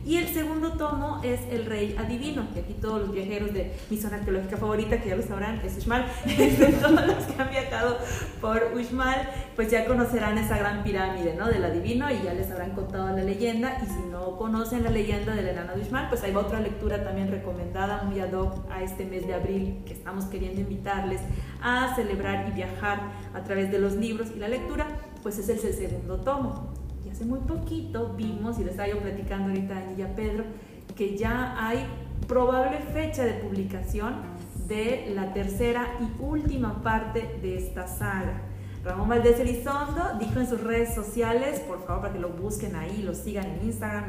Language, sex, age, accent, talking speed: Spanish, female, 40-59, Mexican, 190 wpm